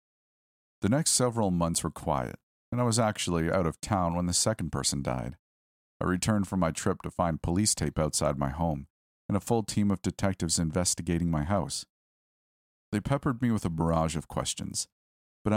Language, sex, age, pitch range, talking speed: English, male, 40-59, 75-100 Hz, 185 wpm